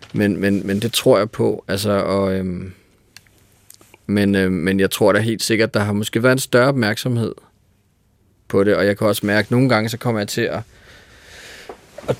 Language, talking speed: Danish, 200 wpm